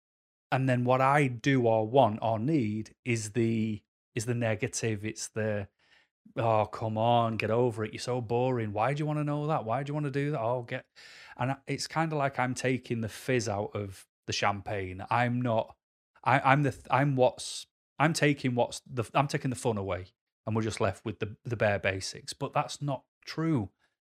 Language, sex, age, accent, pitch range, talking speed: English, male, 30-49, British, 110-135 Hz, 205 wpm